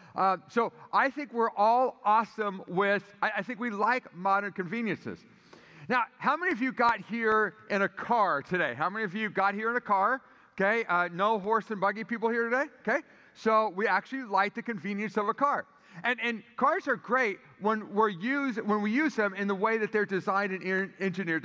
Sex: male